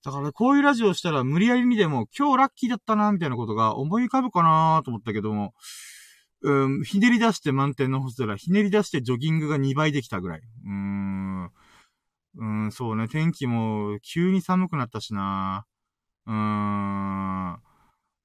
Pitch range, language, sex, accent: 105-170 Hz, Japanese, male, native